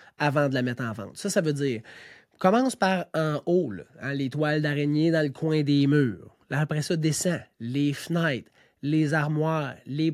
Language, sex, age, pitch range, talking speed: French, male, 30-49, 150-200 Hz, 190 wpm